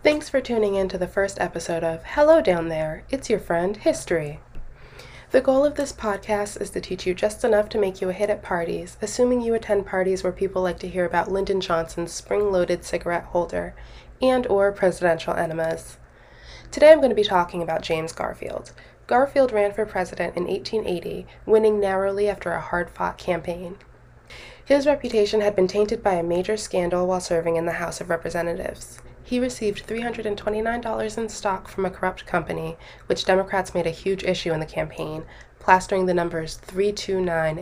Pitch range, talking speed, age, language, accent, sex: 165-210 Hz, 180 wpm, 20-39, English, American, female